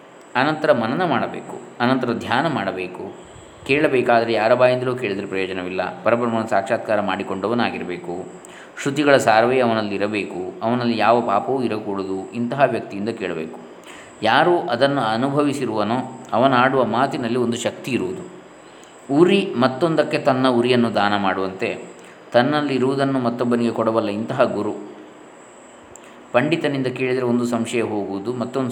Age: 20-39